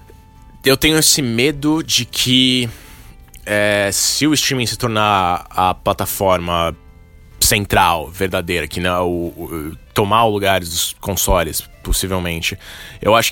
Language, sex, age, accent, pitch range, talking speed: Portuguese, male, 20-39, Brazilian, 85-105 Hz, 125 wpm